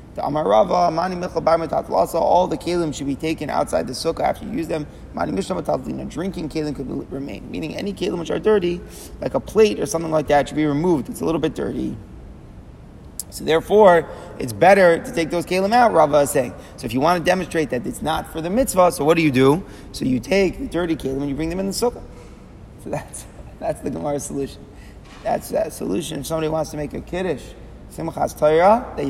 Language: English